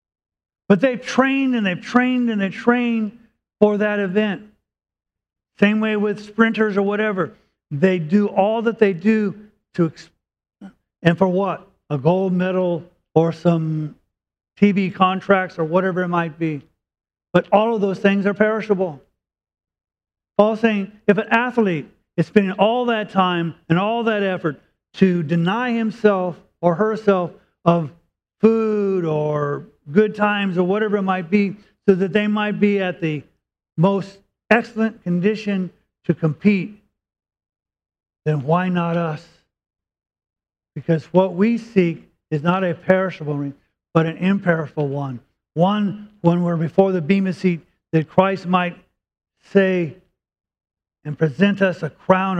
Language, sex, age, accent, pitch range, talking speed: English, male, 40-59, American, 155-205 Hz, 135 wpm